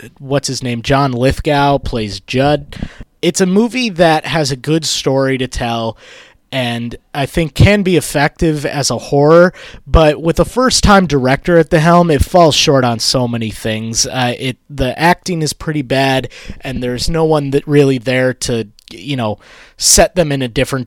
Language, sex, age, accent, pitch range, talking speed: English, male, 20-39, American, 120-160 Hz, 185 wpm